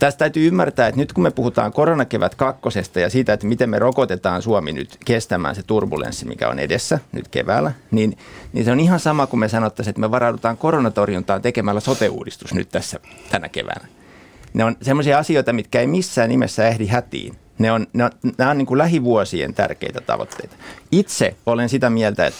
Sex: male